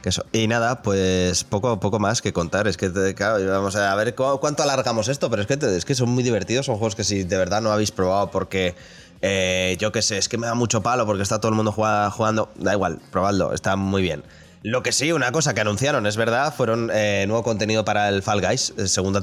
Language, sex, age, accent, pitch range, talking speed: Spanish, male, 20-39, Spanish, 95-110 Hz, 230 wpm